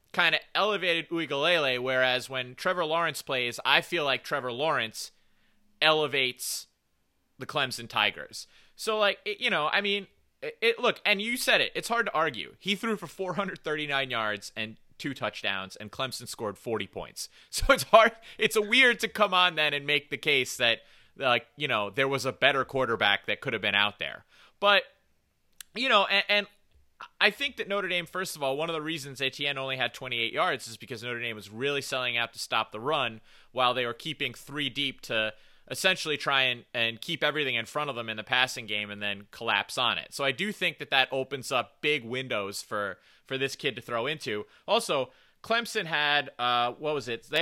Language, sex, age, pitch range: English, male, 30-49, 125-185 Hz